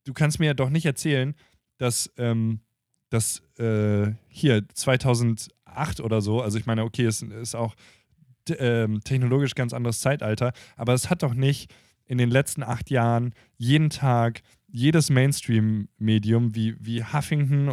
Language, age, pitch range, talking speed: German, 20-39, 115-145 Hz, 150 wpm